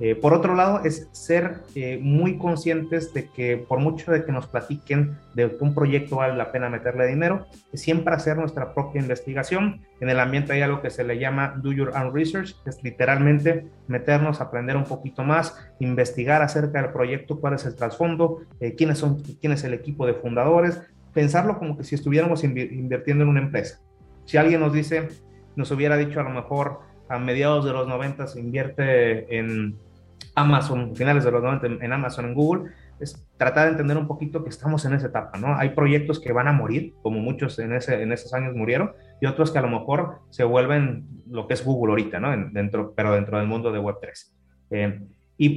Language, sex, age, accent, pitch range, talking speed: Spanish, male, 30-49, Mexican, 125-155 Hz, 205 wpm